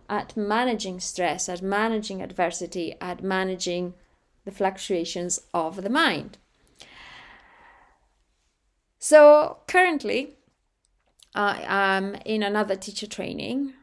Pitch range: 195-275 Hz